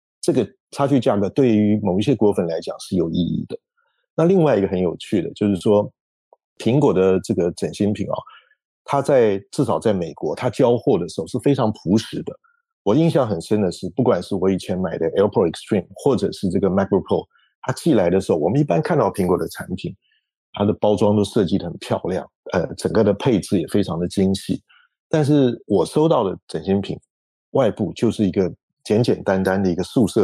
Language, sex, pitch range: Chinese, male, 95-140 Hz